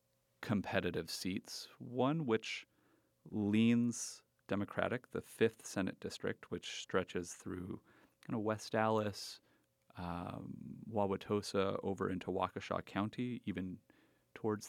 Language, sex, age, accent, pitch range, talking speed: English, male, 30-49, American, 95-110 Hz, 100 wpm